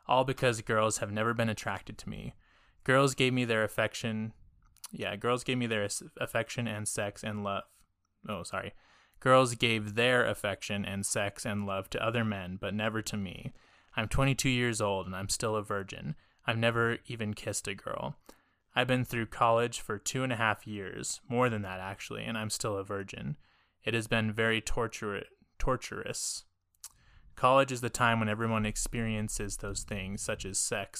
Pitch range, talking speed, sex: 100-120 Hz, 180 wpm, male